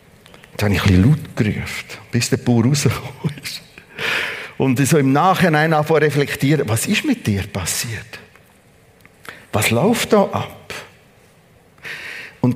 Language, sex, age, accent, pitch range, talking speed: German, male, 50-69, Austrian, 135-200 Hz, 135 wpm